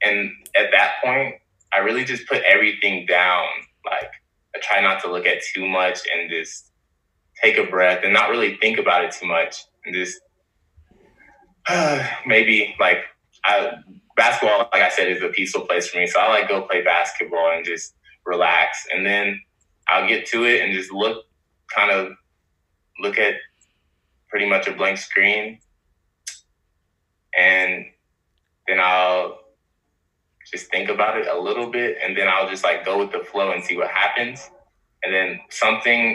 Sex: male